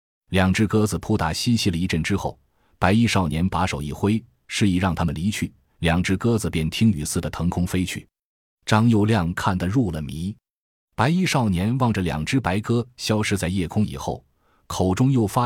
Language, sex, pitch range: Chinese, male, 85-110 Hz